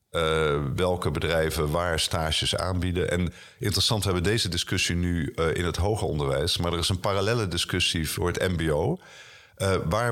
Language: Dutch